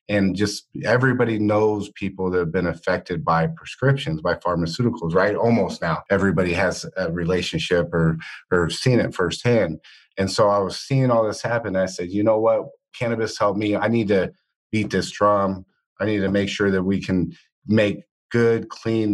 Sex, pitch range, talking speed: male, 90-105 Hz, 180 wpm